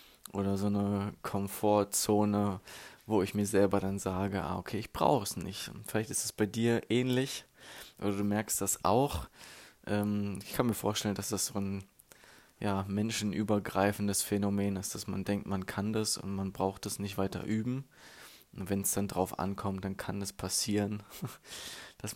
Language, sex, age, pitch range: German, male, 20-39, 100-110 Hz